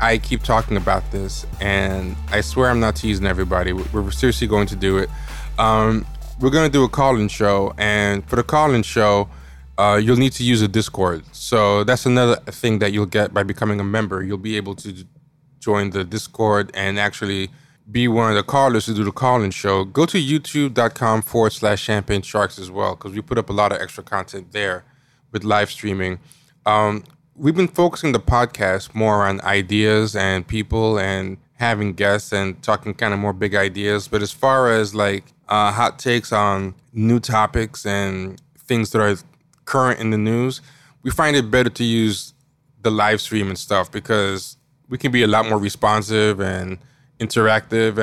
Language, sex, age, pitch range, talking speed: English, male, 20-39, 100-125 Hz, 190 wpm